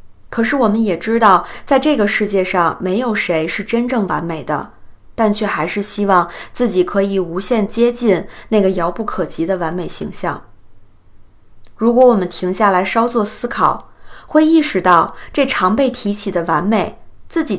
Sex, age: female, 20-39